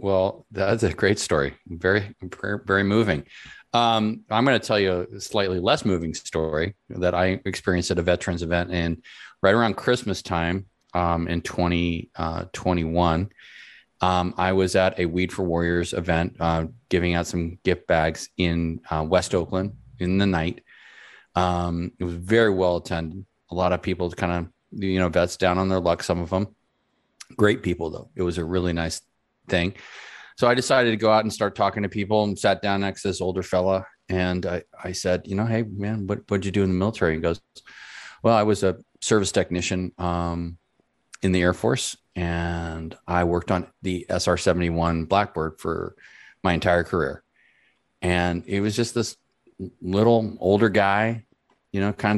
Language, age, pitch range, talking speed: English, 30-49, 85-100 Hz, 180 wpm